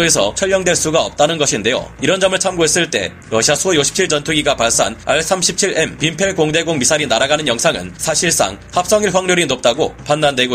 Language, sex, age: Korean, male, 30-49